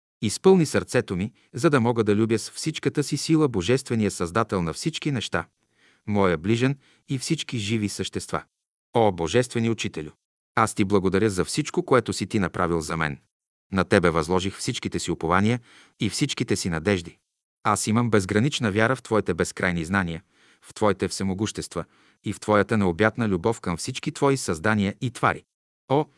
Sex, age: male, 40-59